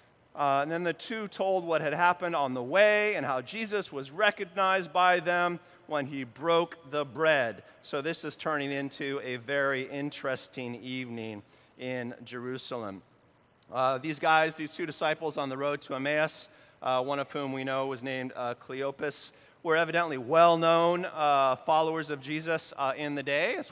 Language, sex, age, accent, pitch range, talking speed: English, male, 30-49, American, 130-160 Hz, 170 wpm